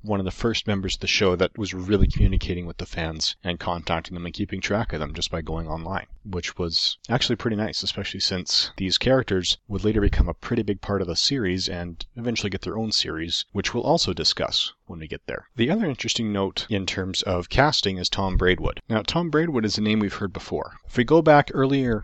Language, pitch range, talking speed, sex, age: English, 90-110 Hz, 230 wpm, male, 30-49